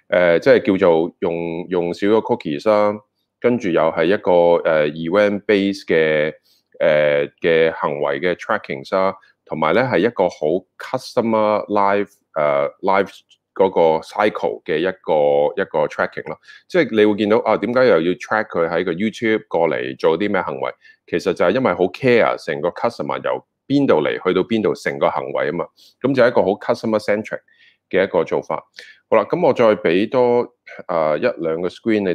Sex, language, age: male, Chinese, 30-49